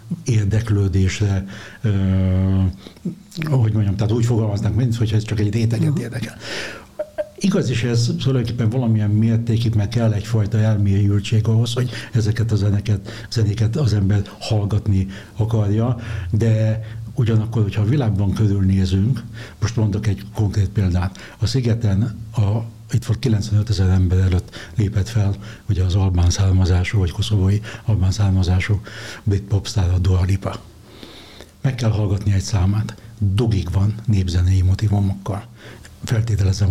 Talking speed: 130 wpm